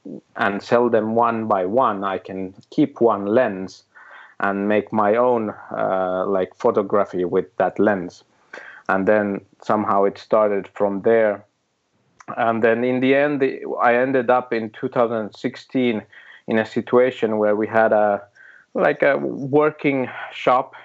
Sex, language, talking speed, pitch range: male, English, 140 wpm, 100-120 Hz